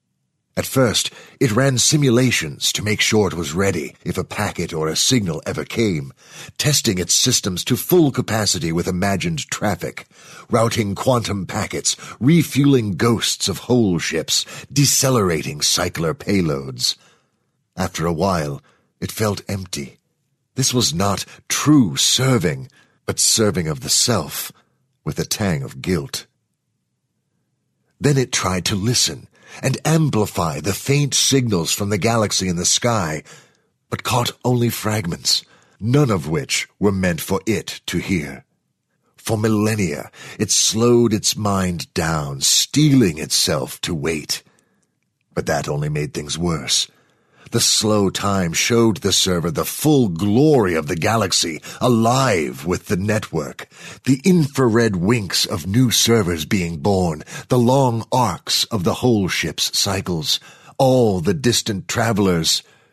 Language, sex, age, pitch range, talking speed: English, male, 50-69, 90-130 Hz, 135 wpm